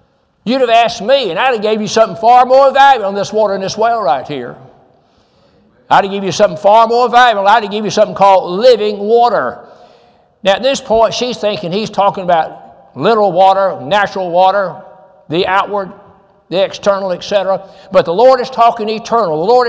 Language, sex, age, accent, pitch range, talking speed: English, male, 60-79, American, 190-230 Hz, 190 wpm